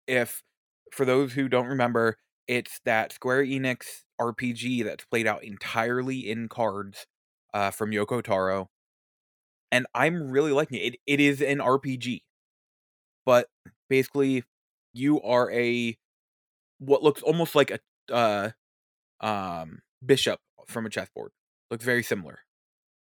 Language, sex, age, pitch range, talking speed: English, male, 20-39, 115-135 Hz, 130 wpm